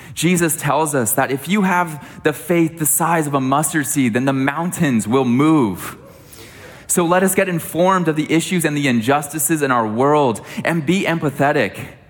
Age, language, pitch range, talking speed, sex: 20-39, English, 120-155 Hz, 185 wpm, male